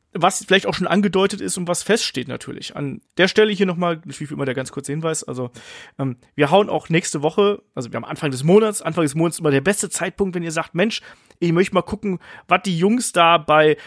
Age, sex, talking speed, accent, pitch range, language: 30-49, male, 235 wpm, German, 145-185 Hz, German